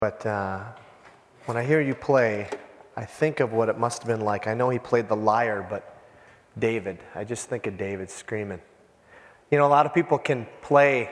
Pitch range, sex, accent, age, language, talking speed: 130-190 Hz, male, American, 30-49, English, 205 wpm